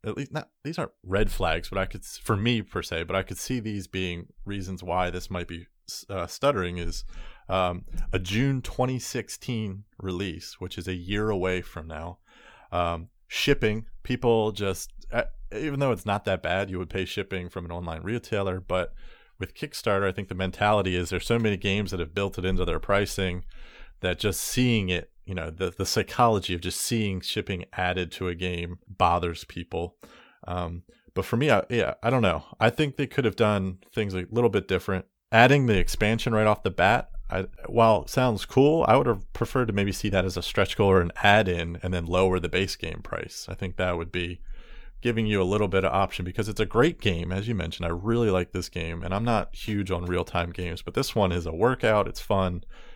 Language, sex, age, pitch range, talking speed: English, male, 30-49, 90-110 Hz, 220 wpm